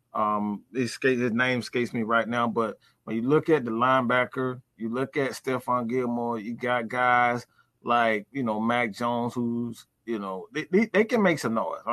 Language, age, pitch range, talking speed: English, 30-49, 105-130 Hz, 190 wpm